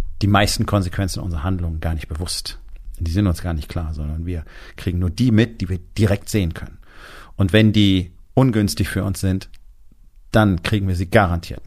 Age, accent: 40-59, German